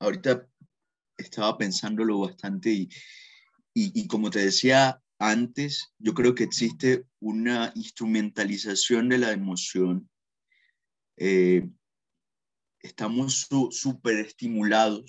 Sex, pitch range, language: male, 105-135 Hz, Spanish